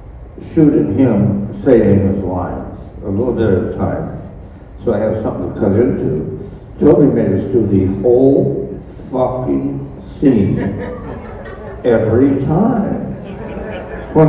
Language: English